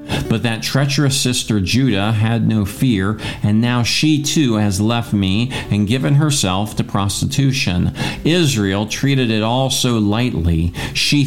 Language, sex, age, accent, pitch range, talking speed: English, male, 50-69, American, 95-125 Hz, 145 wpm